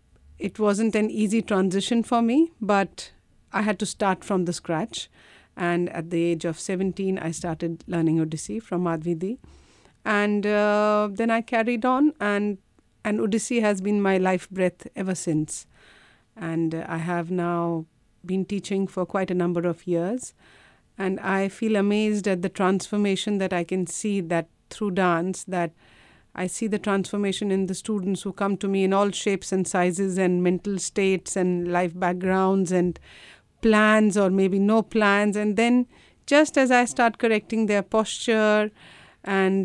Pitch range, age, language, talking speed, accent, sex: 180-210 Hz, 50-69, English, 165 wpm, Indian, female